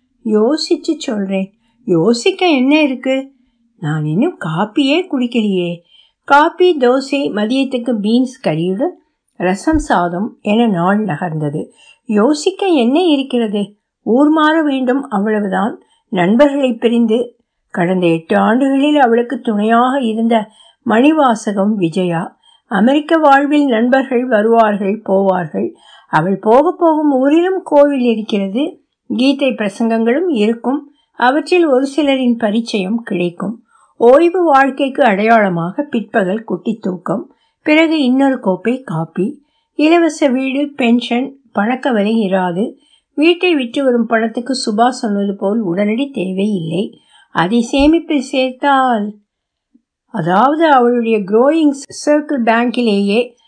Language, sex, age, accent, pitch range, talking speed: Tamil, female, 60-79, native, 210-285 Hz, 100 wpm